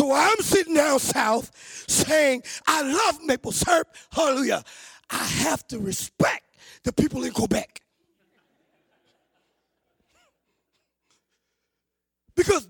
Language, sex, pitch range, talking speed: English, male, 275-360 Hz, 95 wpm